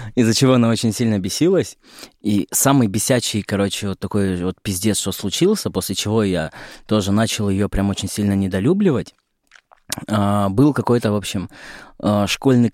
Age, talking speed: 20-39, 145 wpm